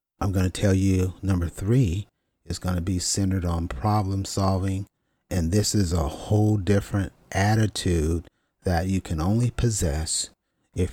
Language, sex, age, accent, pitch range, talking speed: English, male, 40-59, American, 85-105 Hz, 155 wpm